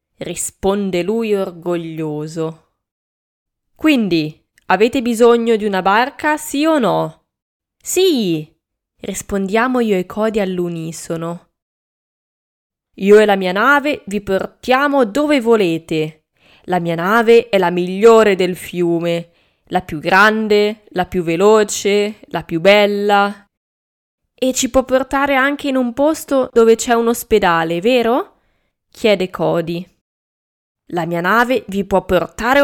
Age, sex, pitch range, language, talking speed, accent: 20-39, female, 175-235 Hz, Italian, 120 wpm, native